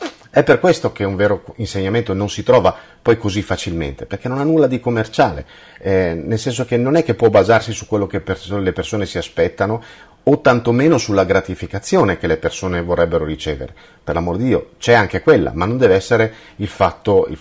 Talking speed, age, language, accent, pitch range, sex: 195 wpm, 40-59, Italian, native, 85-110 Hz, male